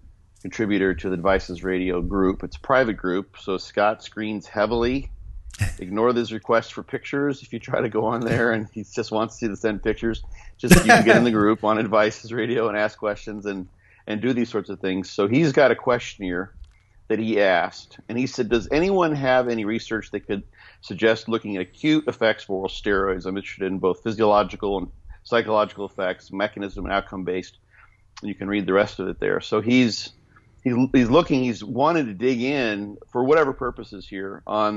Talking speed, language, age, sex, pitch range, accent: 195 wpm, English, 50-69, male, 95-115 Hz, American